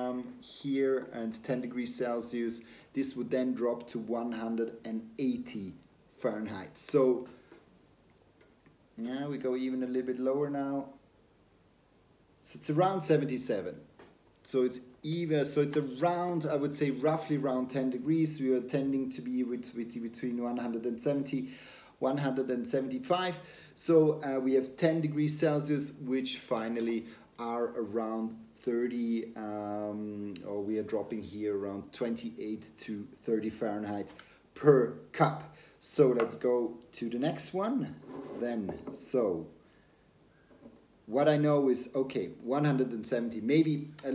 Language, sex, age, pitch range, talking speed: English, male, 30-49, 115-145 Hz, 125 wpm